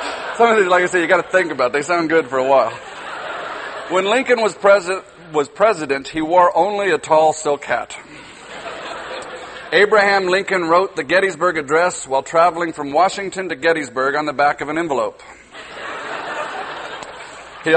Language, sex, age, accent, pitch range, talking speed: English, male, 40-59, American, 145-190 Hz, 170 wpm